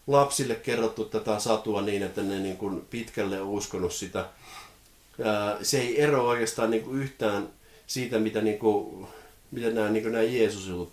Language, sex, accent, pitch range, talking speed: Finnish, male, native, 100-120 Hz, 160 wpm